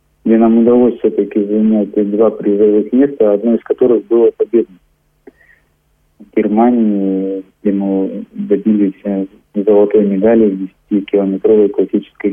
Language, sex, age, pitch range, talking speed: Russian, male, 20-39, 105-120 Hz, 115 wpm